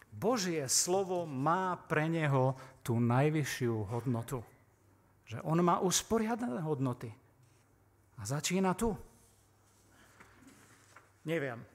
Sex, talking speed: male, 85 wpm